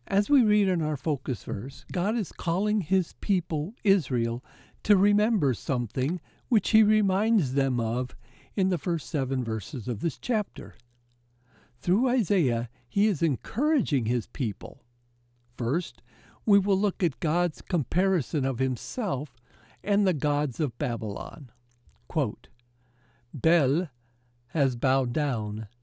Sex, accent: male, American